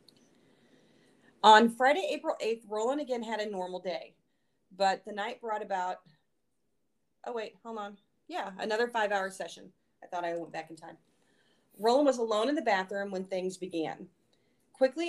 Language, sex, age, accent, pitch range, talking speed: English, female, 30-49, American, 180-225 Hz, 160 wpm